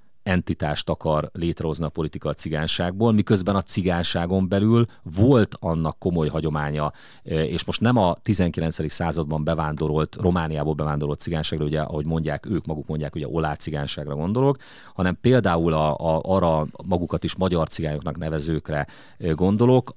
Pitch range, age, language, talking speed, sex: 80-95 Hz, 30-49, Hungarian, 130 wpm, male